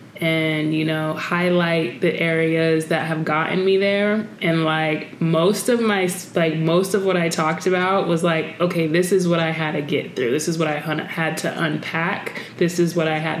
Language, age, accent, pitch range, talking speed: English, 20-39, American, 155-180 Hz, 205 wpm